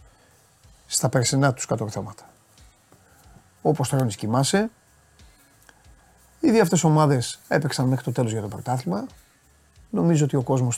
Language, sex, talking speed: Greek, male, 115 wpm